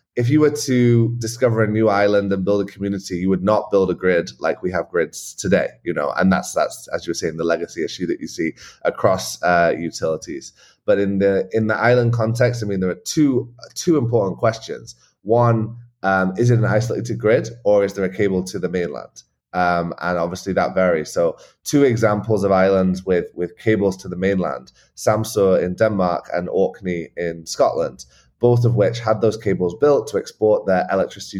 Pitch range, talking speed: 90-115 Hz, 200 wpm